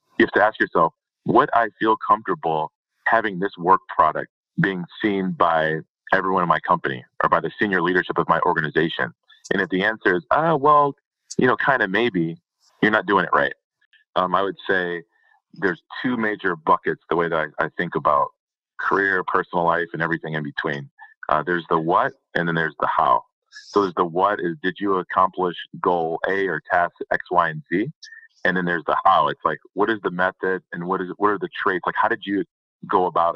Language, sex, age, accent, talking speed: English, male, 30-49, American, 210 wpm